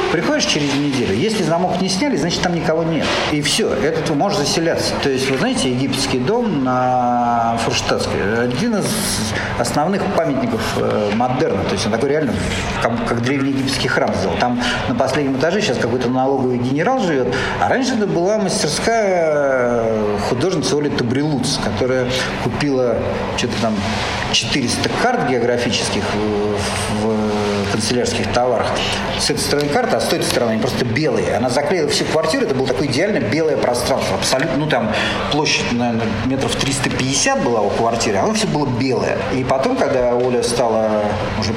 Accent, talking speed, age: native, 155 wpm, 50-69